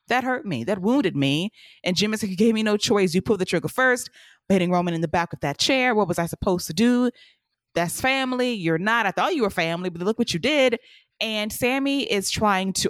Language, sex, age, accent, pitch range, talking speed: English, female, 20-39, American, 165-200 Hz, 245 wpm